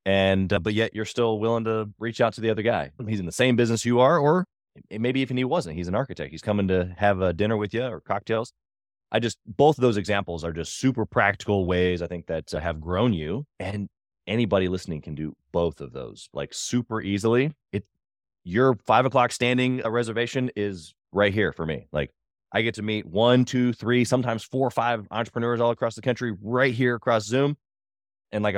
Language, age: English, 30-49